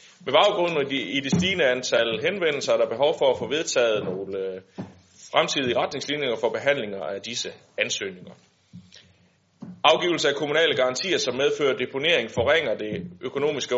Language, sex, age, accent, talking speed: Danish, male, 30-49, native, 140 wpm